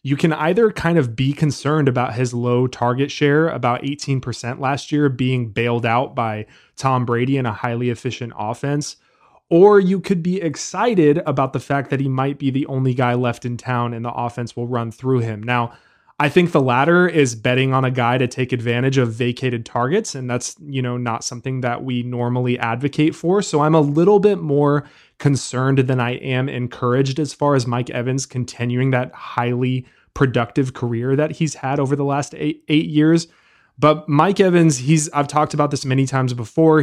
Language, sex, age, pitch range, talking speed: English, male, 20-39, 120-145 Hz, 195 wpm